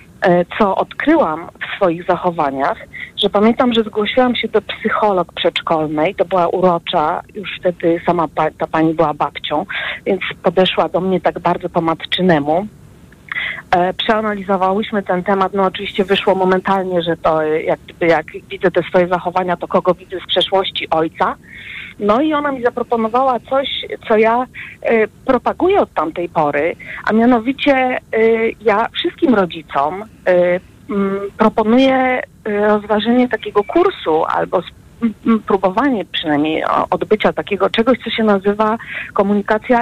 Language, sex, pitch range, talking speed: Polish, female, 185-235 Hz, 125 wpm